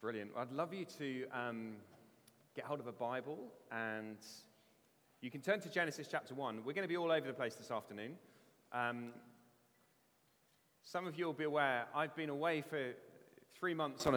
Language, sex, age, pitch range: English, male, 30-49, 125-160 Hz